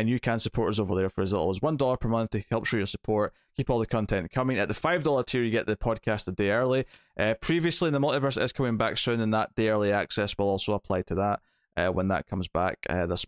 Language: English